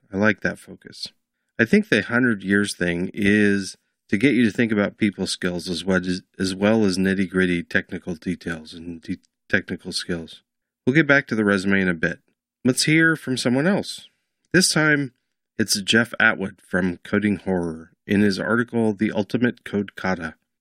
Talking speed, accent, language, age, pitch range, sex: 170 wpm, American, English, 40-59, 90-115 Hz, male